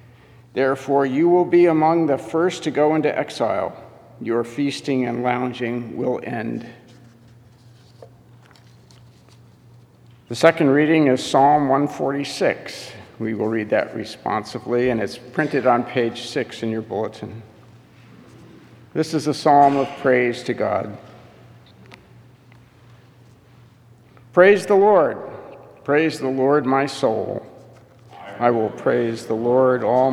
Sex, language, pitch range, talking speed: male, English, 115-140 Hz, 120 wpm